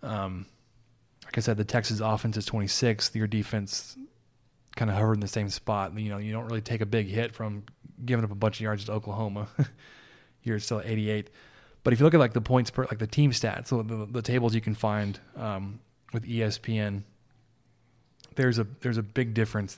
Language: English